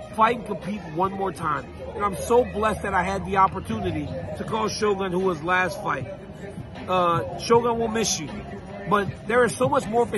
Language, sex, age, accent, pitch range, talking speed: English, male, 40-59, American, 195-230 Hz, 195 wpm